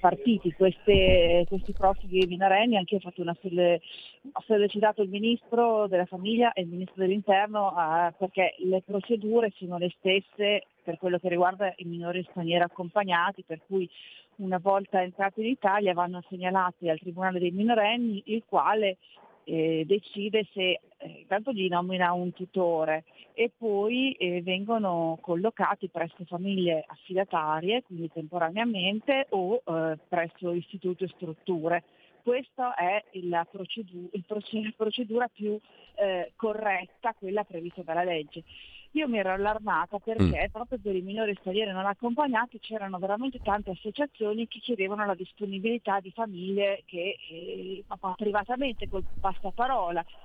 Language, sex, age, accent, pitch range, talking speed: Italian, female, 40-59, native, 180-215 Hz, 130 wpm